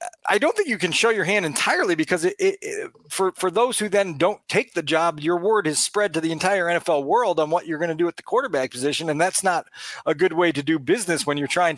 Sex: male